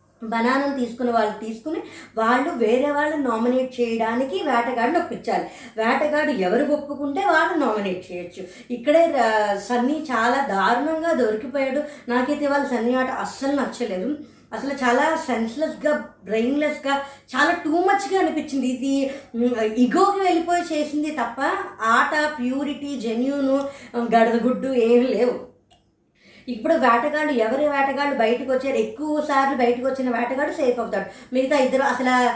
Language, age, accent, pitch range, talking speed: Telugu, 20-39, native, 235-300 Hz, 115 wpm